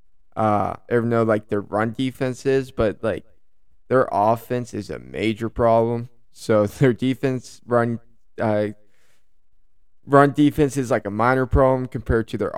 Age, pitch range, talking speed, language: 20-39, 105-120 Hz, 155 wpm, English